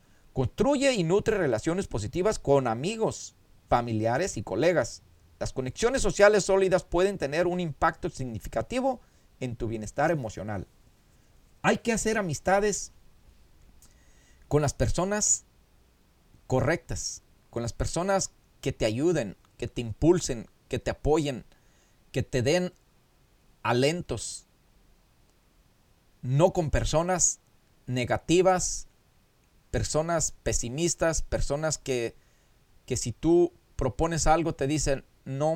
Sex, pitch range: male, 115-175 Hz